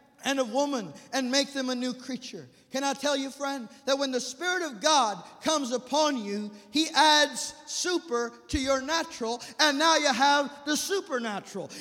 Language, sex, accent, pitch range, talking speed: English, male, American, 270-325 Hz, 180 wpm